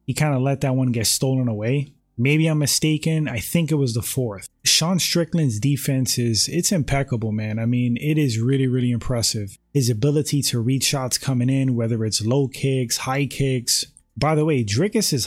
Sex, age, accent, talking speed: male, 20-39, American, 190 wpm